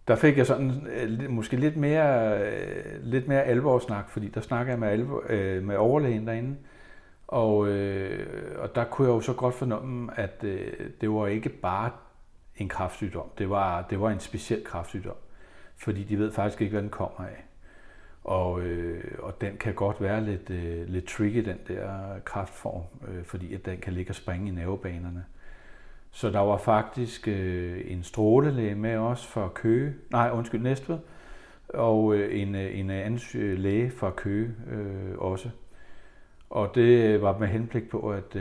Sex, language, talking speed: male, Danish, 160 wpm